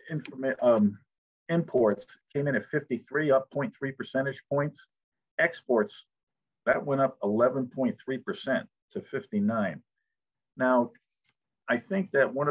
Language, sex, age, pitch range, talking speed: English, male, 50-69, 110-140 Hz, 115 wpm